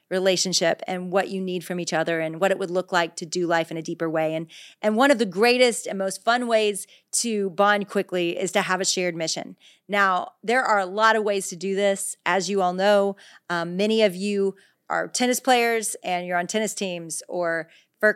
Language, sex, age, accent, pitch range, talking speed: English, female, 40-59, American, 185-225 Hz, 225 wpm